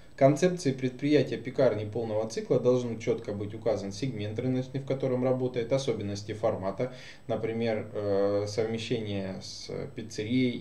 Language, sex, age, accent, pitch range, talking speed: Russian, male, 20-39, native, 110-140 Hz, 105 wpm